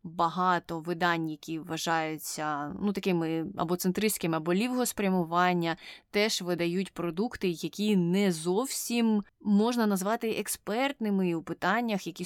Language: Ukrainian